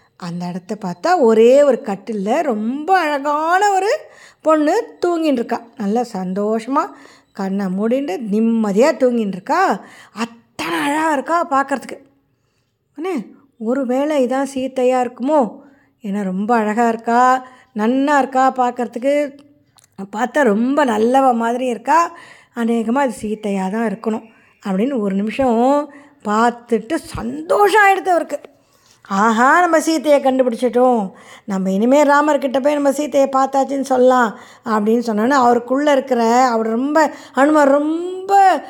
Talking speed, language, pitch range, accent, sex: 115 wpm, Tamil, 225-300 Hz, native, female